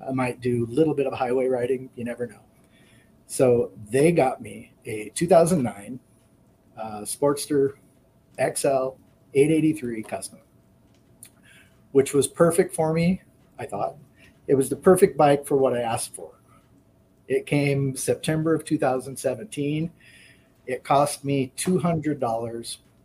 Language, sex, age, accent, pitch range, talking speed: English, male, 40-59, American, 115-140 Hz, 130 wpm